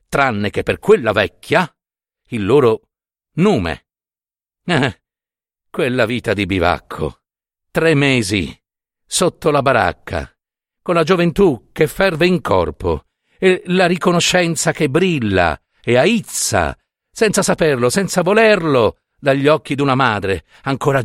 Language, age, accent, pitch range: Italian, 50-69, native, 110-180 Hz